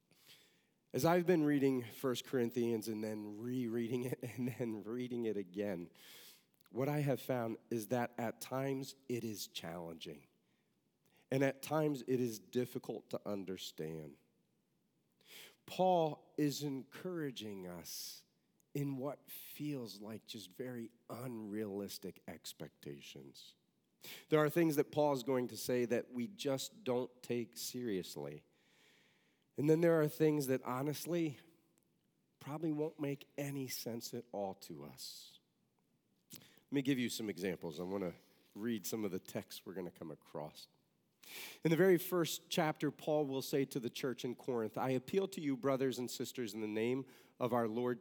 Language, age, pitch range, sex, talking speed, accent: English, 40-59, 115-145 Hz, male, 150 wpm, American